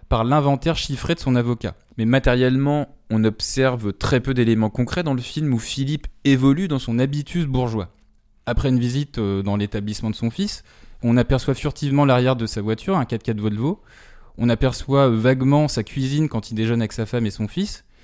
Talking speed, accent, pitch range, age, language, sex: 195 wpm, French, 110-145 Hz, 20-39, French, male